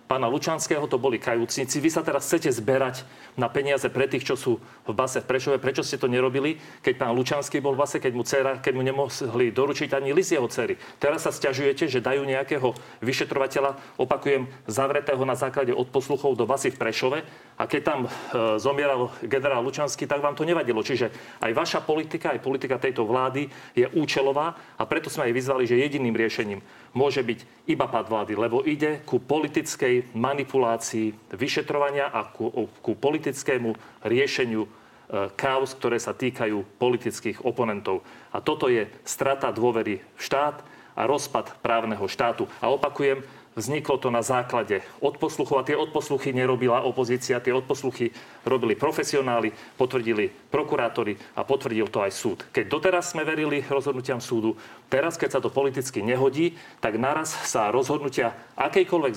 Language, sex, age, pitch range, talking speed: Slovak, male, 40-59, 120-145 Hz, 160 wpm